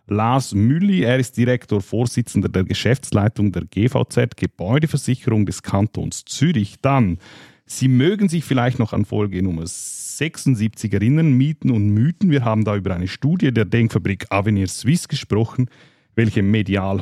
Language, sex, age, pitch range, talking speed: German, male, 40-59, 95-125 Hz, 145 wpm